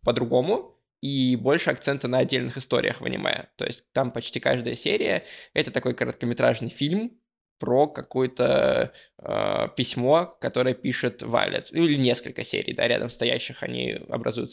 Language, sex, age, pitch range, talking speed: Russian, male, 20-39, 120-130 Hz, 150 wpm